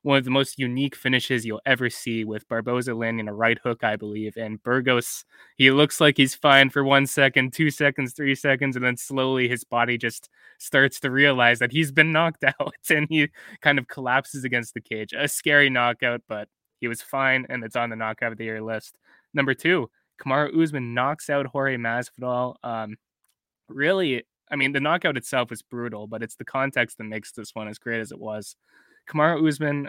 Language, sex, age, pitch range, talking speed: English, male, 20-39, 115-140 Hz, 205 wpm